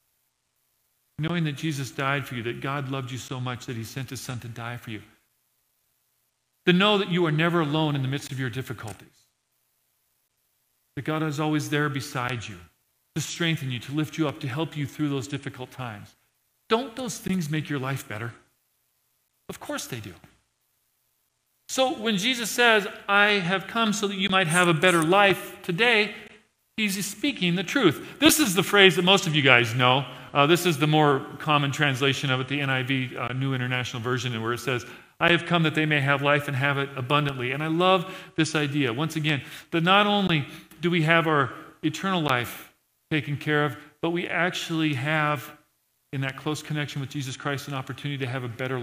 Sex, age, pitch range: male, 40-59, 125-170 Hz